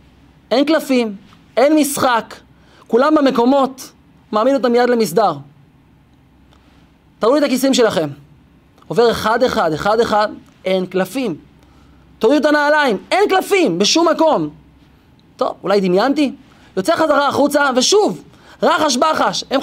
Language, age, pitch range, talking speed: Hebrew, 30-49, 230-315 Hz, 110 wpm